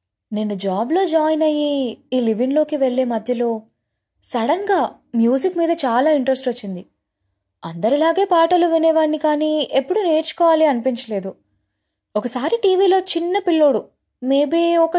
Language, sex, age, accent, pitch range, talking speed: Telugu, female, 20-39, native, 215-315 Hz, 110 wpm